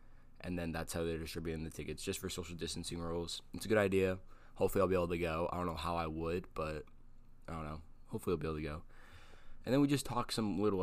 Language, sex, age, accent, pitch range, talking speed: English, male, 20-39, American, 80-95 Hz, 255 wpm